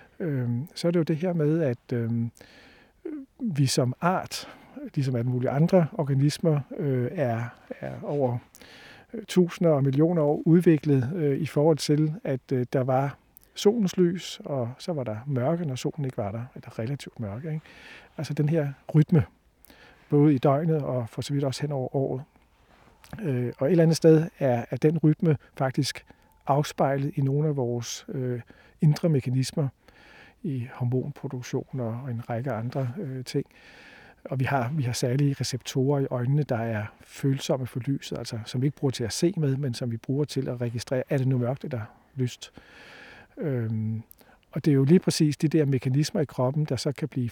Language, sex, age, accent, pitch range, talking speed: Danish, male, 50-69, native, 125-155 Hz, 185 wpm